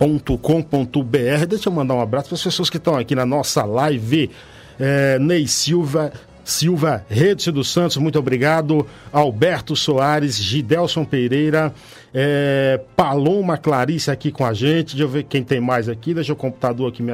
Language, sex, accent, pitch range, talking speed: Portuguese, male, Brazilian, 130-160 Hz, 165 wpm